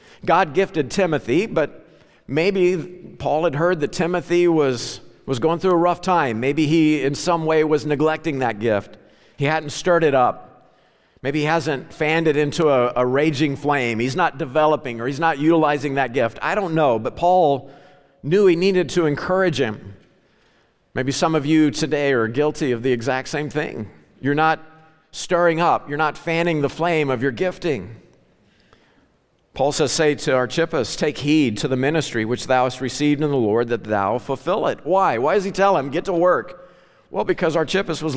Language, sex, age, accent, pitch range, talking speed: English, male, 50-69, American, 140-185 Hz, 185 wpm